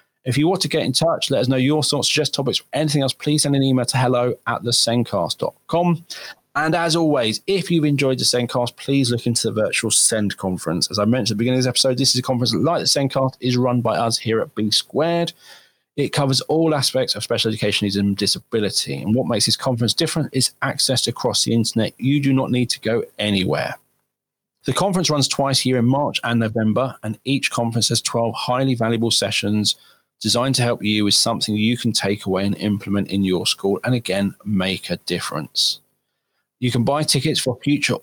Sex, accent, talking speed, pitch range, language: male, British, 215 wpm, 105-130 Hz, English